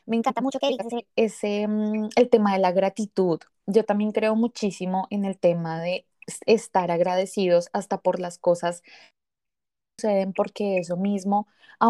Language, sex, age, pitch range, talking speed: Spanish, female, 20-39, 190-230 Hz, 150 wpm